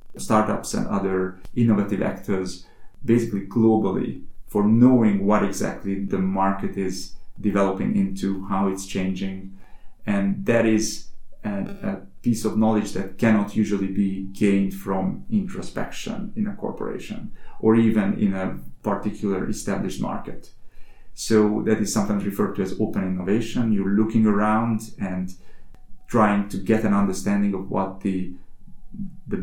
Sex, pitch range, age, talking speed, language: male, 95-110 Hz, 30-49, 135 wpm, English